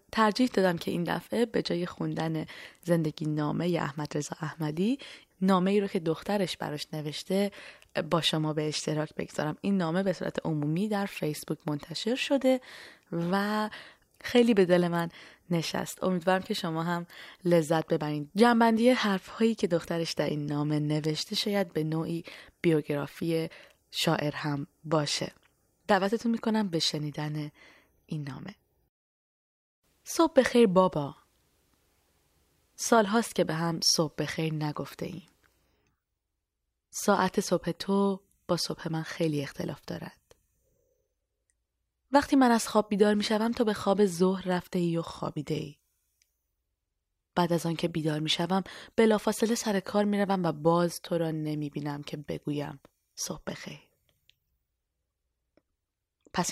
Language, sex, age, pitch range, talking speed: Persian, female, 20-39, 150-200 Hz, 130 wpm